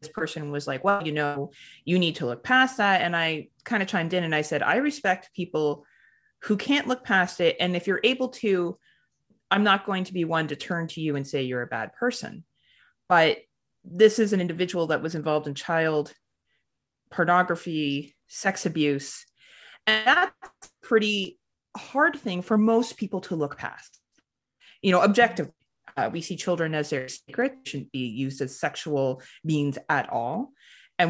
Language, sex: English, female